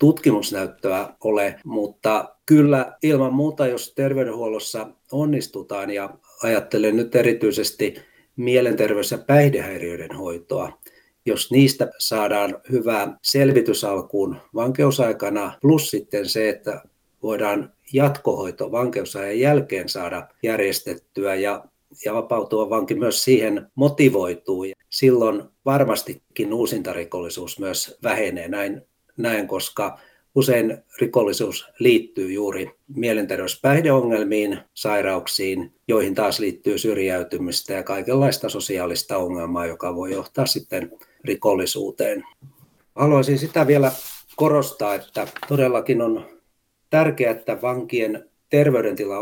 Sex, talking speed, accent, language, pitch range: male, 100 wpm, native, Finnish, 100-140 Hz